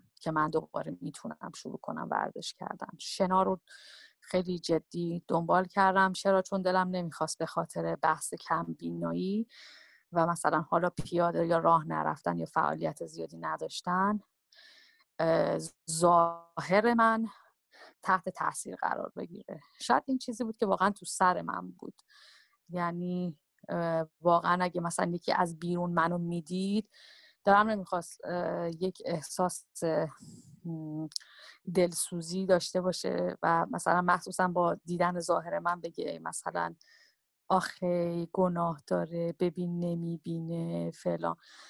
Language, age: Persian, 30-49